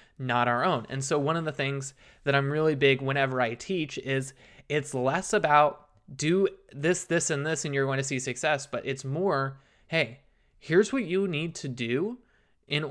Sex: male